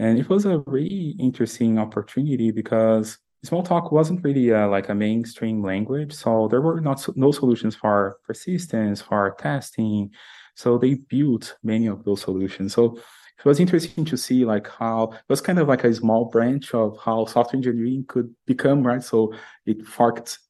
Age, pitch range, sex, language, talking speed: 20-39, 110-135 Hz, male, English, 175 wpm